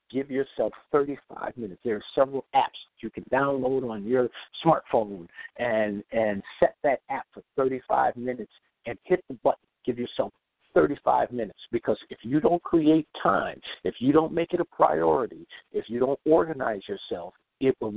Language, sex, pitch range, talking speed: English, male, 115-160 Hz, 170 wpm